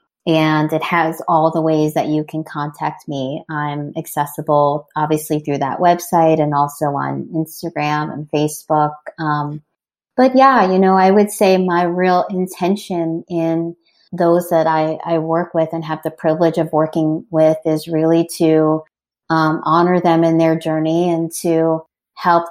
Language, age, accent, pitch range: English, 30-49, American, 155-180 Hz